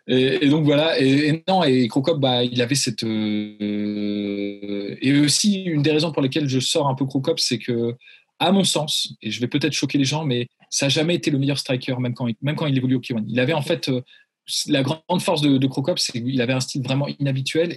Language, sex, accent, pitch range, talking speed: French, male, French, 125-150 Hz, 245 wpm